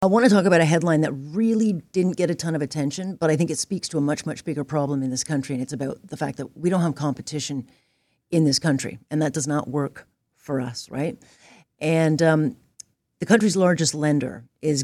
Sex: female